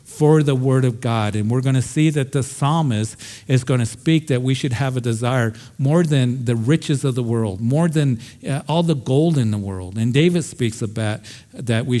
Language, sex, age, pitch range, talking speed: English, male, 50-69, 115-140 Hz, 220 wpm